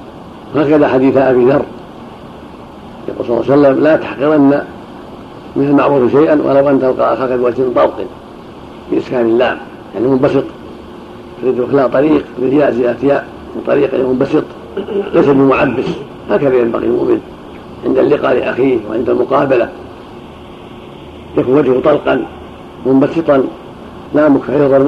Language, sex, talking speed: Arabic, male, 115 wpm